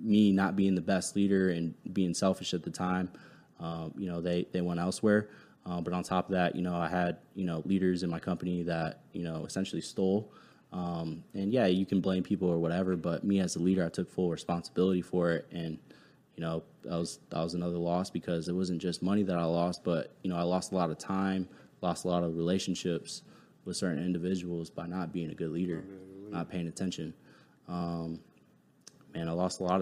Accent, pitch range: American, 85-95 Hz